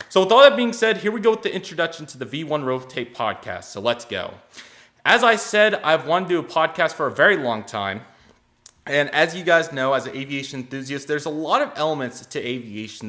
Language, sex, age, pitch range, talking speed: English, male, 20-39, 120-155 Hz, 230 wpm